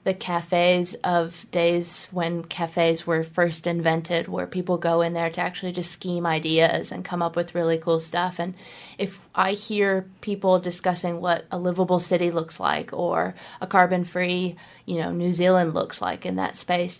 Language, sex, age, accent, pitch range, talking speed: English, female, 20-39, American, 170-185 Hz, 180 wpm